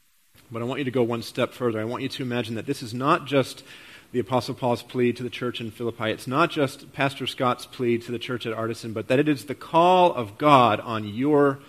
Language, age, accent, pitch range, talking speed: English, 40-59, American, 110-135 Hz, 250 wpm